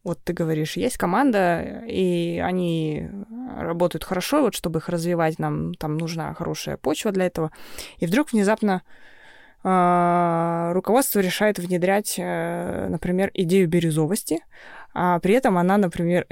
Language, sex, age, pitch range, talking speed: Russian, female, 20-39, 175-230 Hz, 130 wpm